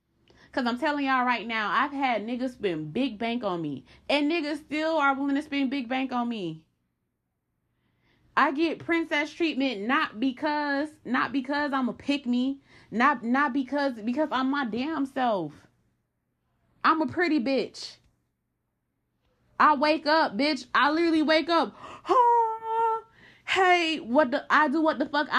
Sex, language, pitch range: female, English, 255-305 Hz